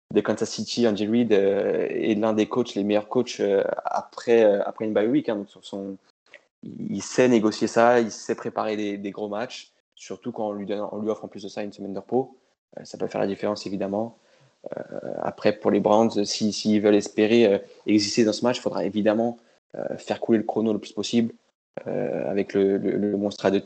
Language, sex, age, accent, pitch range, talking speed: French, male, 20-39, French, 100-120 Hz, 230 wpm